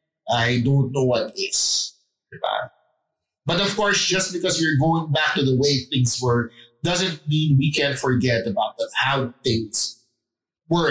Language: English